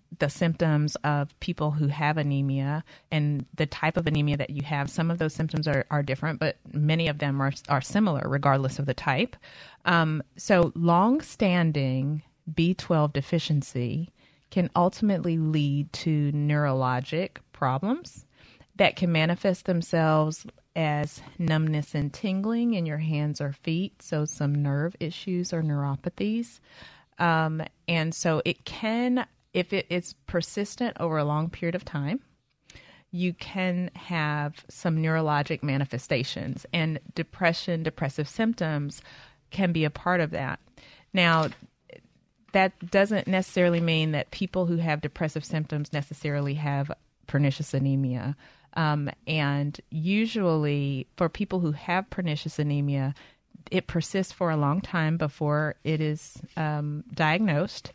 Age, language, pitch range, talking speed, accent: 30-49, English, 145-175 Hz, 135 wpm, American